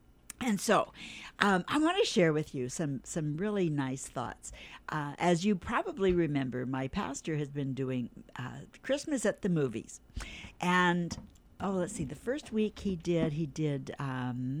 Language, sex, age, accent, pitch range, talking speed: English, female, 60-79, American, 140-210 Hz, 165 wpm